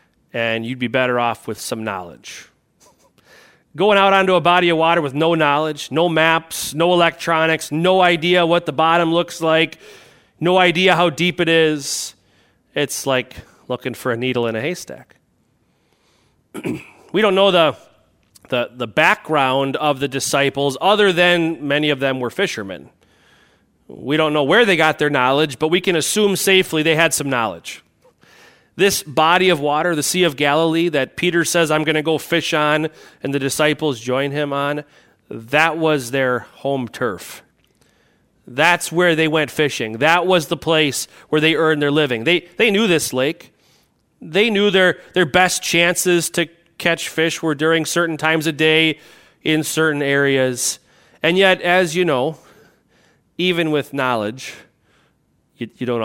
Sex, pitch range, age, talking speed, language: male, 140-175 Hz, 30-49, 165 wpm, English